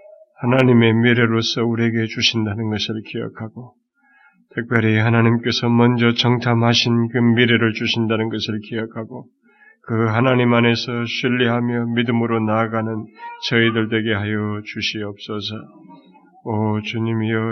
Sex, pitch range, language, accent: male, 115-135 Hz, Korean, native